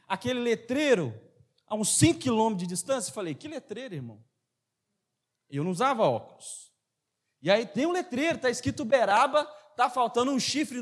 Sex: male